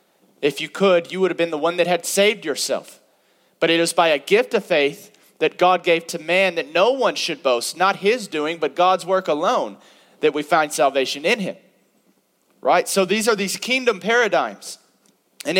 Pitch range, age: 185-230 Hz, 30-49